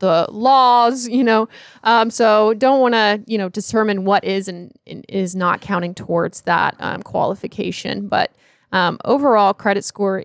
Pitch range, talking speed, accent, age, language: 190-235 Hz, 160 wpm, American, 20-39, English